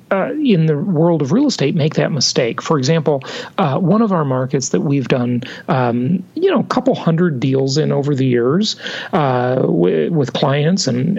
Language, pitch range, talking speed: English, 140-195 Hz, 195 wpm